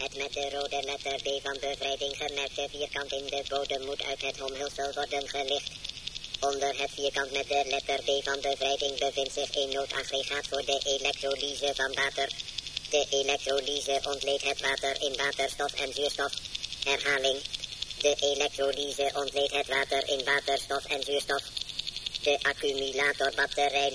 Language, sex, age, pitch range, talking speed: Dutch, male, 20-39, 135-140 Hz, 145 wpm